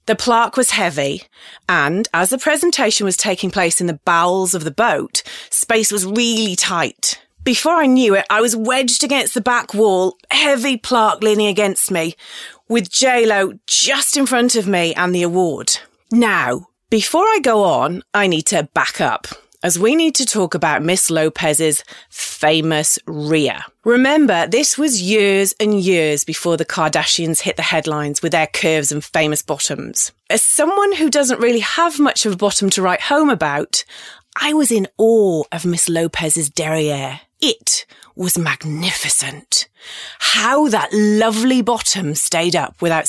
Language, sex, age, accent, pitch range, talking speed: English, female, 30-49, British, 165-230 Hz, 165 wpm